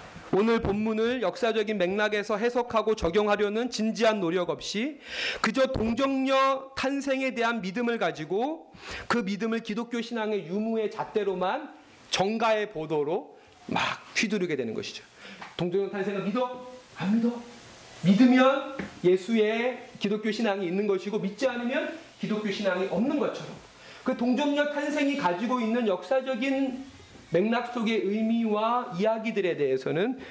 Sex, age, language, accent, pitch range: male, 40-59, Korean, native, 165-235 Hz